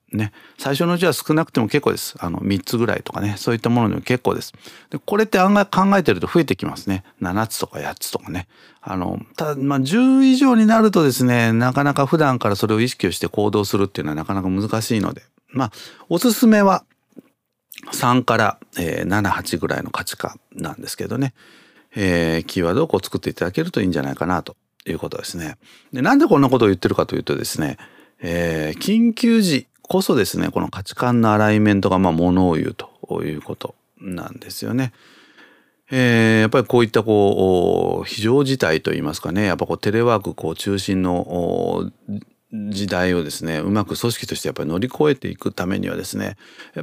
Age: 40-59